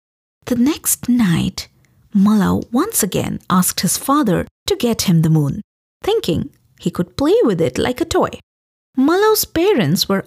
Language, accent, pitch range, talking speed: English, Indian, 170-265 Hz, 150 wpm